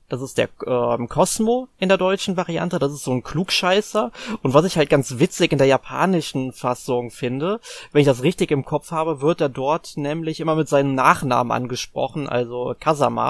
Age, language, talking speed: 20-39, German, 195 wpm